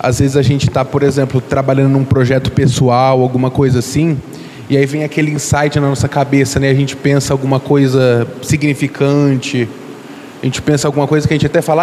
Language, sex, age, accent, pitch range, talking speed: Portuguese, male, 20-39, Brazilian, 140-170 Hz, 200 wpm